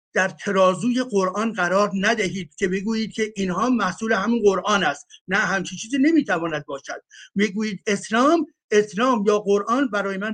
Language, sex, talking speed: Persian, male, 145 wpm